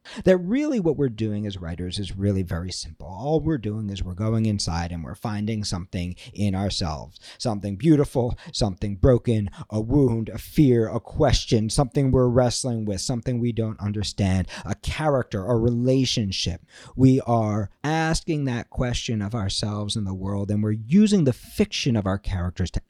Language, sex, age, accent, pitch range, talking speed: English, male, 50-69, American, 100-135 Hz, 170 wpm